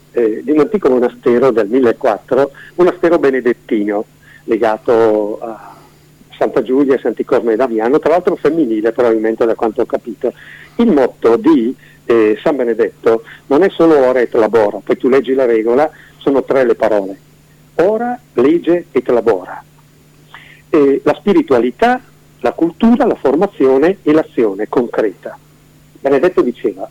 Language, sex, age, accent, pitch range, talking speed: Italian, male, 50-69, native, 125-195 Hz, 140 wpm